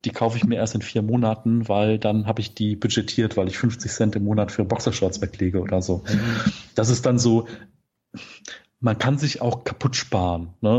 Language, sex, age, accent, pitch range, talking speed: German, male, 40-59, German, 105-125 Hz, 200 wpm